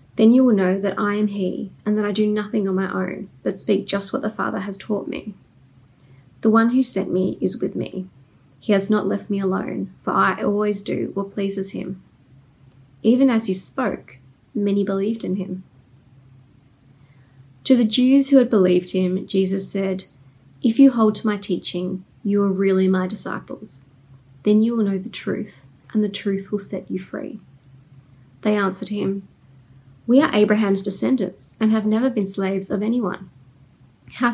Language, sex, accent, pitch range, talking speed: English, female, Australian, 135-215 Hz, 180 wpm